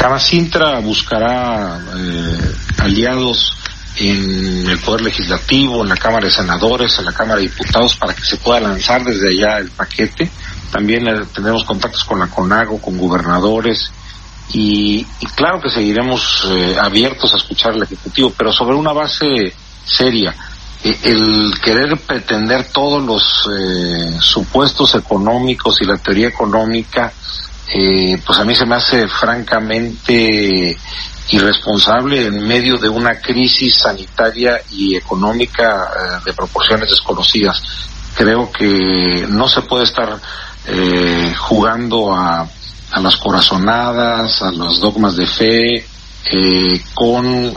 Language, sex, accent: Spanish, male, Mexican